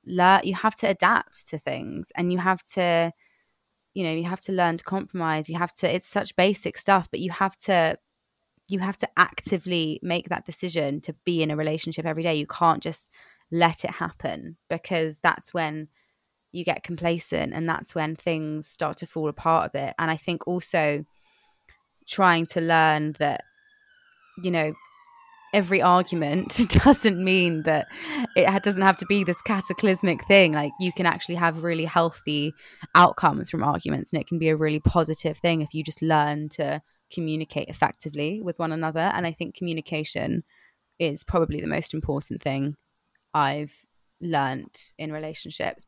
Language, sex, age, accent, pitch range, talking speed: English, female, 20-39, British, 155-185 Hz, 170 wpm